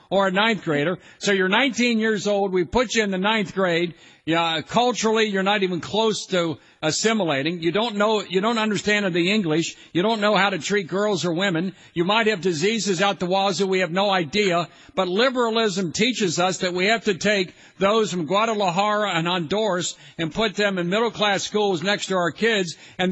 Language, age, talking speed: English, 50-69, 200 wpm